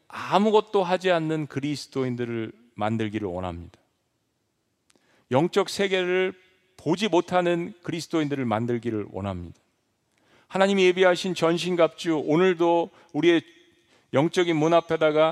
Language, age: Korean, 40-59